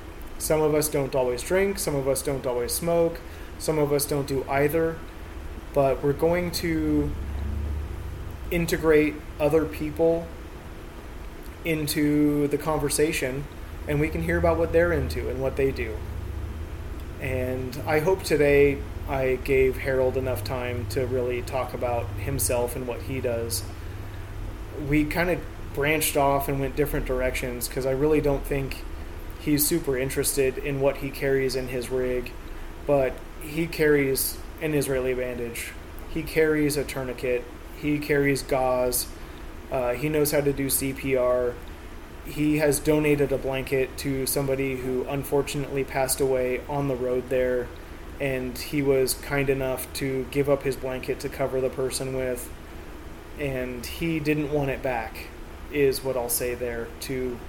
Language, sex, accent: English, male, American